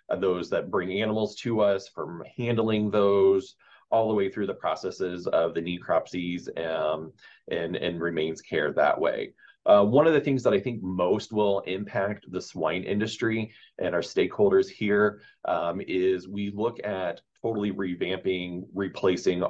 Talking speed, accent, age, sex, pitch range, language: 155 wpm, American, 30-49, male, 90-110 Hz, English